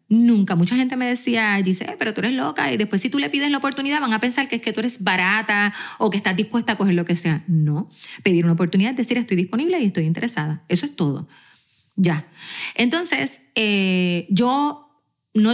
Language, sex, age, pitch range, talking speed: Spanish, female, 30-49, 185-245 Hz, 210 wpm